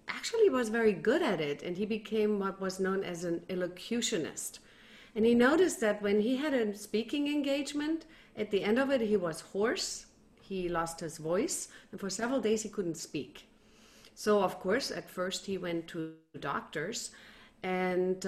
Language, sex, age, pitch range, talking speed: English, female, 40-59, 185-235 Hz, 175 wpm